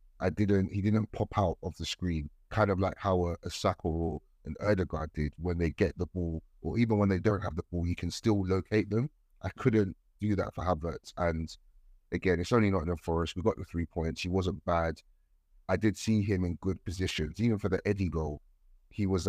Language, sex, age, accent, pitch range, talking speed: English, male, 30-49, British, 80-100 Hz, 225 wpm